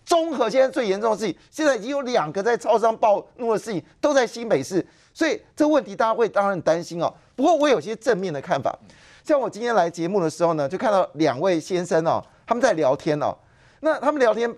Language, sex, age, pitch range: Chinese, male, 30-49, 185-275 Hz